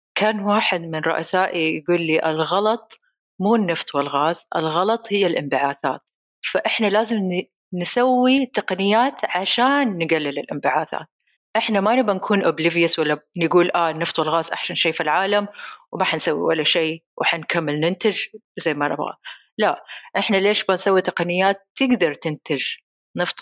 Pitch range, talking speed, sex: 160-205 Hz, 135 wpm, female